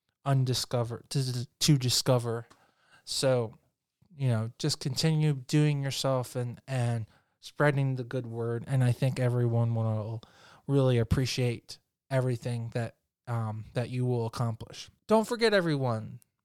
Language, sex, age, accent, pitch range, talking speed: English, male, 20-39, American, 120-150 Hz, 125 wpm